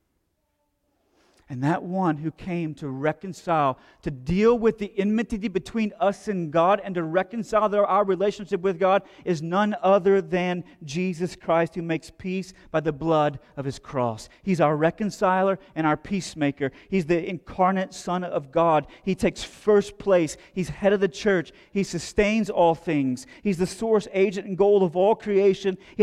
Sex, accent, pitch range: male, American, 160-210 Hz